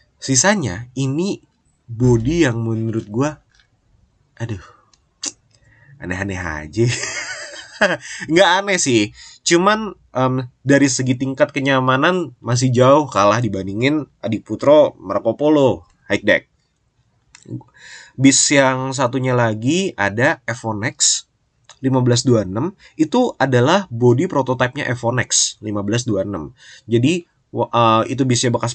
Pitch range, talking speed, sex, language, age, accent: 110-135 Hz, 90 wpm, male, Indonesian, 20-39, native